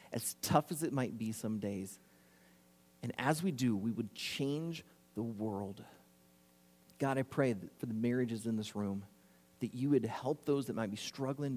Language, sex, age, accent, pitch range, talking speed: English, male, 30-49, American, 105-140 Hz, 180 wpm